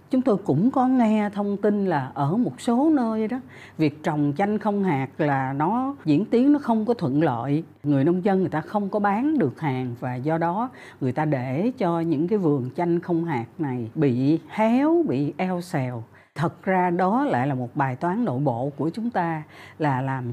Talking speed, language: 210 wpm, Vietnamese